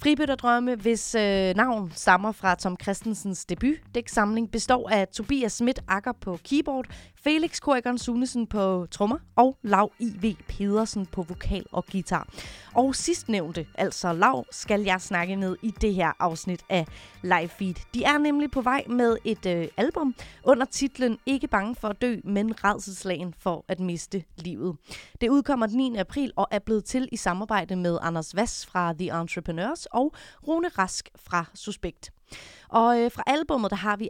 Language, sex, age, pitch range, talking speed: Danish, female, 30-49, 185-245 Hz, 170 wpm